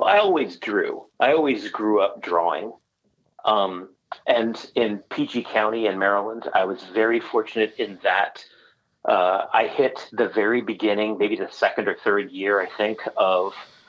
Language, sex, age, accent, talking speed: English, male, 30-49, American, 155 wpm